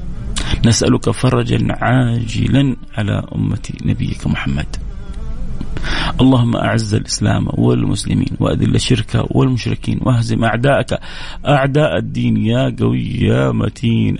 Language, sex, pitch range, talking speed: English, male, 100-125 Hz, 95 wpm